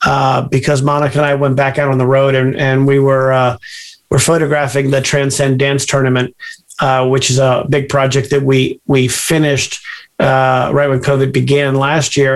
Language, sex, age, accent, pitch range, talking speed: English, male, 40-59, American, 135-170 Hz, 190 wpm